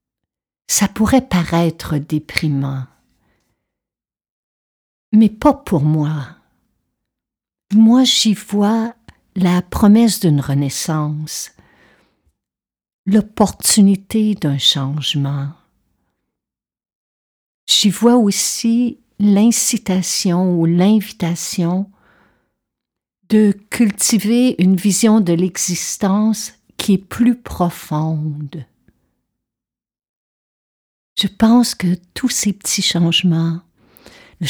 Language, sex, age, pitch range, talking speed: French, female, 50-69, 155-200 Hz, 75 wpm